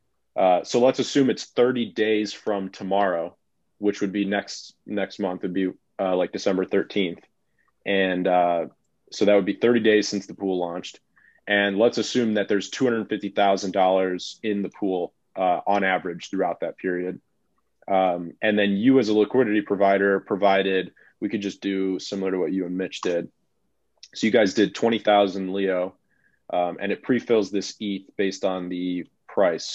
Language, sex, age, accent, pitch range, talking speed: English, male, 20-39, American, 95-105 Hz, 170 wpm